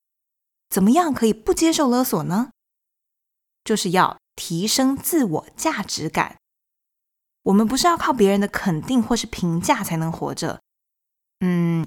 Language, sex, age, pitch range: Chinese, female, 20-39, 175-255 Hz